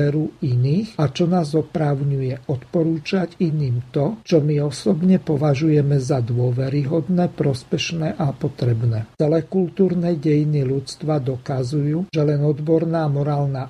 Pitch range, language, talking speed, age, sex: 140-170 Hz, Slovak, 115 wpm, 50-69, male